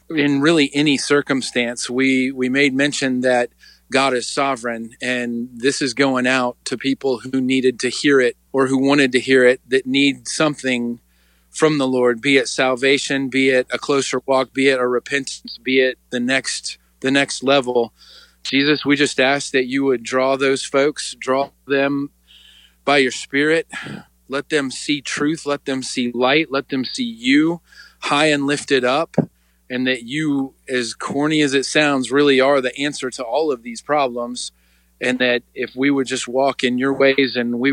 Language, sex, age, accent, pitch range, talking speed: English, male, 40-59, American, 125-140 Hz, 180 wpm